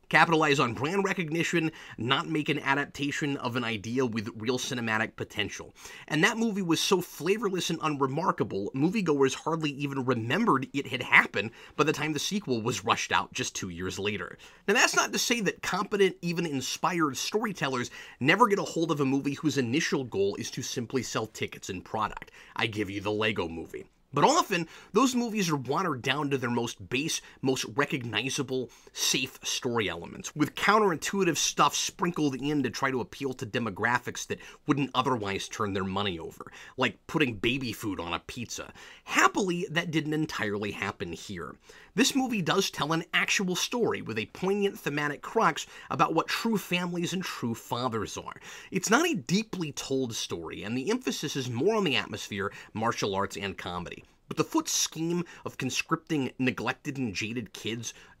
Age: 30-49